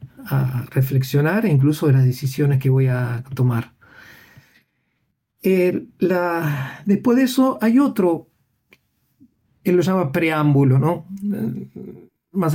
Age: 50-69